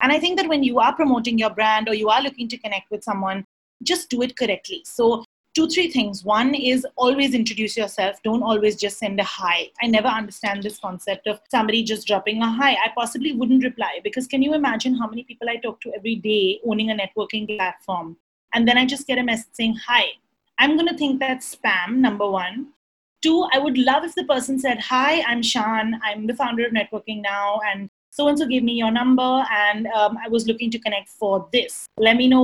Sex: female